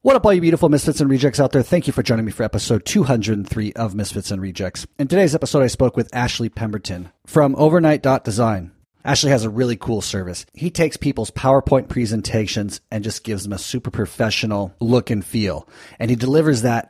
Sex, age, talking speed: male, 30-49, 200 wpm